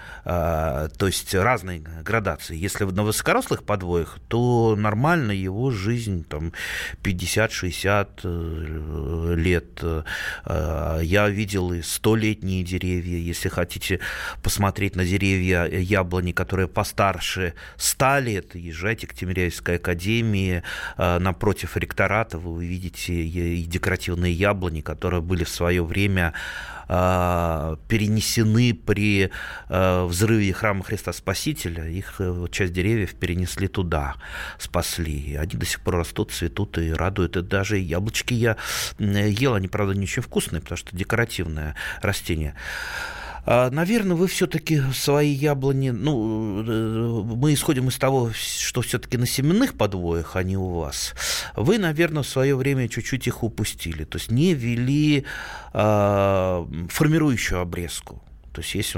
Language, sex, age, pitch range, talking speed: Russian, male, 30-49, 85-110 Hz, 115 wpm